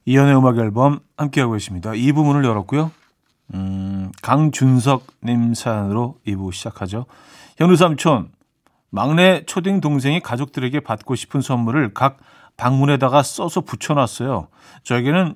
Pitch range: 115-155 Hz